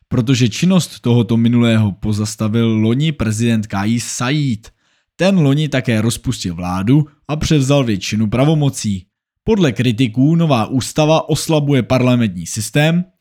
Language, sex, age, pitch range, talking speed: Czech, male, 20-39, 110-150 Hz, 115 wpm